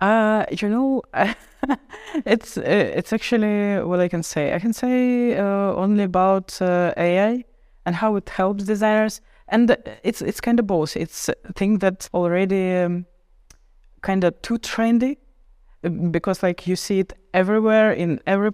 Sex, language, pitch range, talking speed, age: female, English, 170-205 Hz, 150 wpm, 20-39